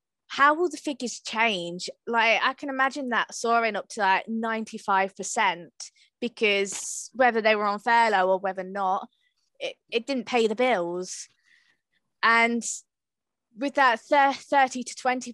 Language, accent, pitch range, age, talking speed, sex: English, British, 190-245 Hz, 20-39, 135 wpm, female